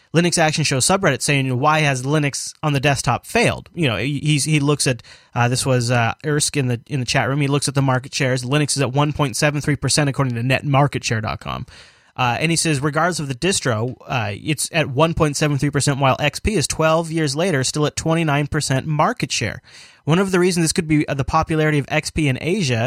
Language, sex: English, male